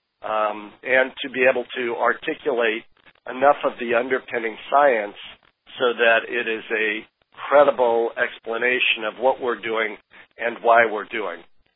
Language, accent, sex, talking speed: English, American, male, 140 wpm